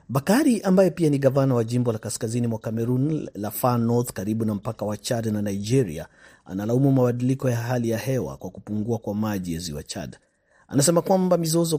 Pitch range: 110-135 Hz